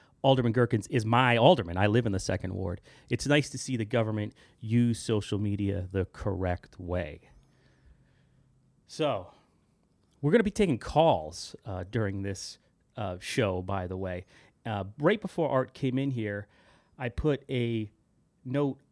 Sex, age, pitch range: male, 30-49, 105-145 Hz